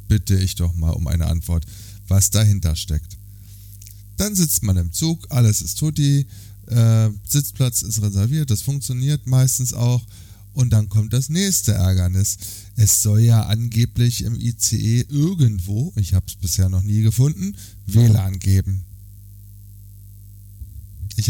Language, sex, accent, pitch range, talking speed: German, male, German, 95-115 Hz, 140 wpm